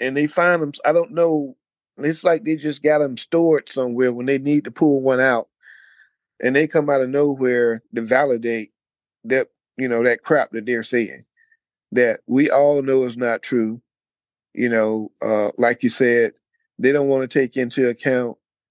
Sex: male